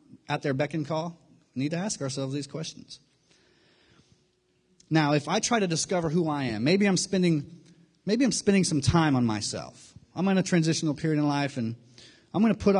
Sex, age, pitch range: male, 30-49, 135-170 Hz